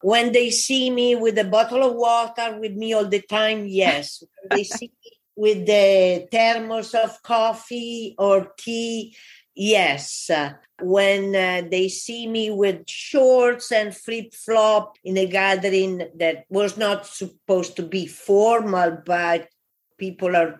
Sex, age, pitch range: female, 50-69, 180-225 Hz